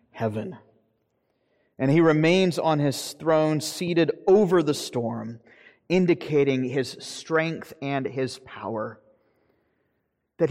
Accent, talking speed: American, 105 wpm